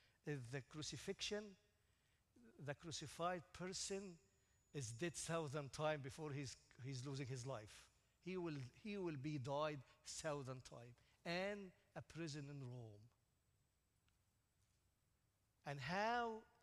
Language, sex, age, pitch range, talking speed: English, male, 50-69, 125-175 Hz, 110 wpm